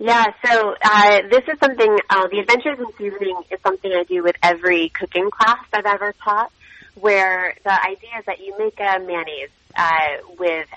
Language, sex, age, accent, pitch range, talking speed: English, female, 30-49, American, 170-210 Hz, 185 wpm